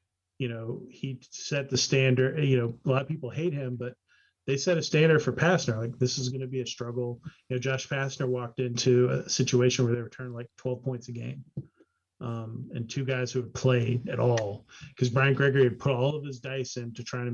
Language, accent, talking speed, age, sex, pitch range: English, American, 230 wpm, 30-49, male, 120-130 Hz